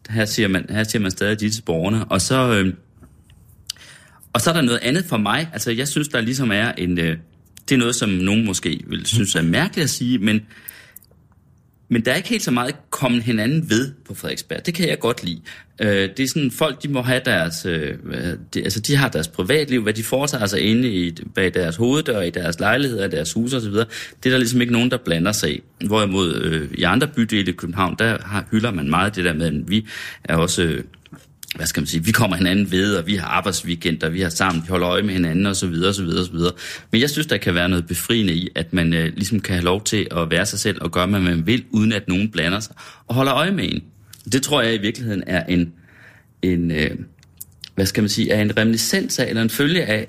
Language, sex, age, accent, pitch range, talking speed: Danish, male, 30-49, native, 90-120 Hz, 225 wpm